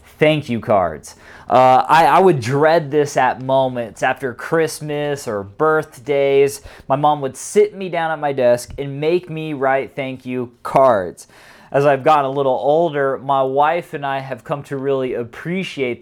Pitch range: 125-155 Hz